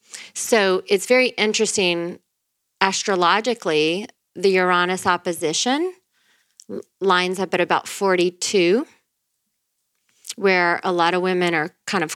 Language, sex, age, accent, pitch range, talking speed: English, female, 30-49, American, 165-190 Hz, 105 wpm